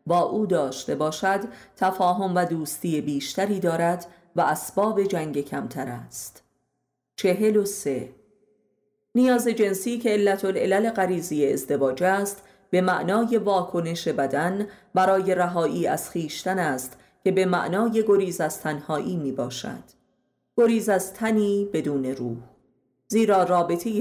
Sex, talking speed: female, 120 wpm